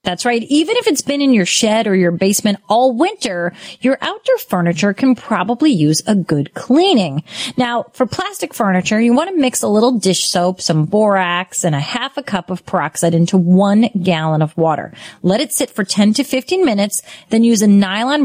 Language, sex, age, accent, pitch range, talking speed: English, female, 30-49, American, 185-260 Hz, 200 wpm